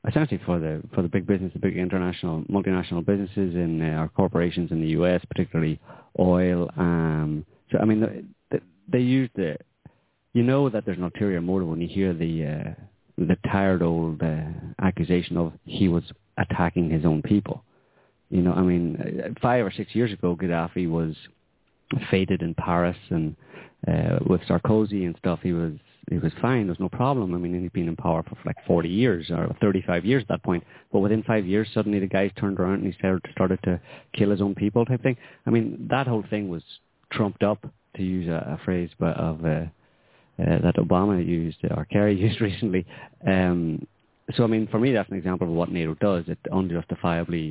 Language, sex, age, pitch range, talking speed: English, male, 30-49, 85-105 Hz, 195 wpm